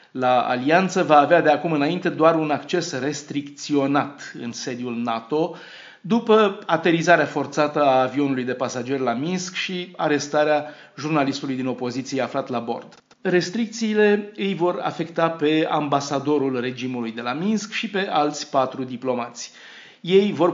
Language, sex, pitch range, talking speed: Romanian, male, 135-175 Hz, 140 wpm